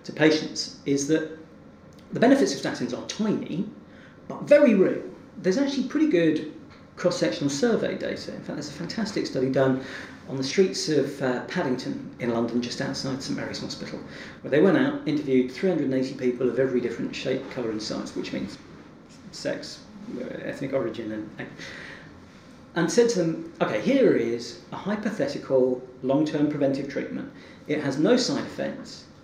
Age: 40-59